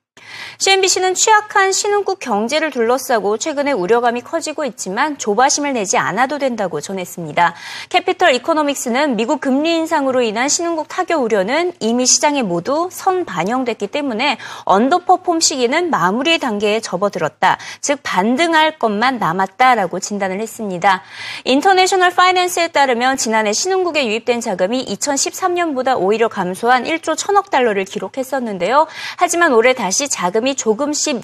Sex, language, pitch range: female, Korean, 205-315 Hz